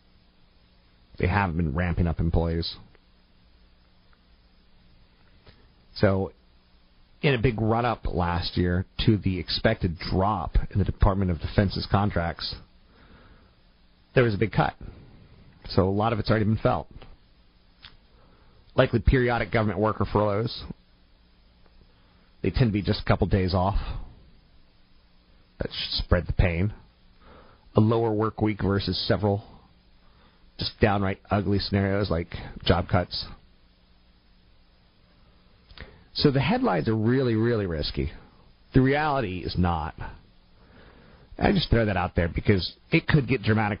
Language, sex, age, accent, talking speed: English, male, 40-59, American, 125 wpm